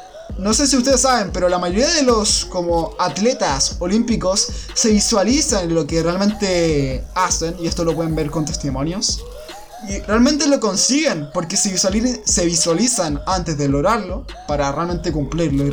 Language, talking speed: Spanish, 160 wpm